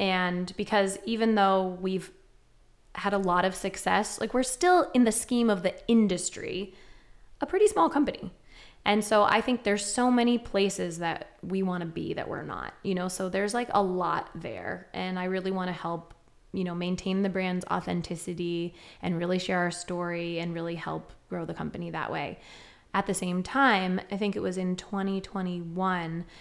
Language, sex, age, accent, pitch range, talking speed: English, female, 20-39, American, 180-205 Hz, 185 wpm